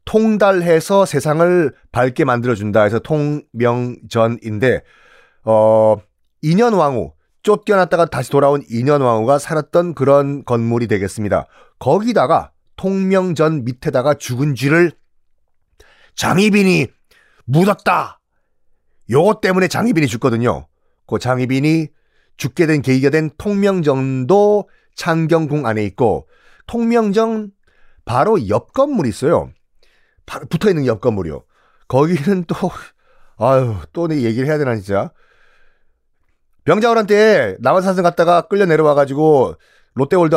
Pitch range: 130-190 Hz